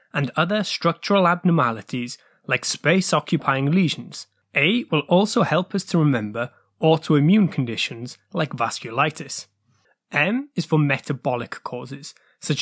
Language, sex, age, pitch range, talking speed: English, male, 20-39, 135-180 Hz, 115 wpm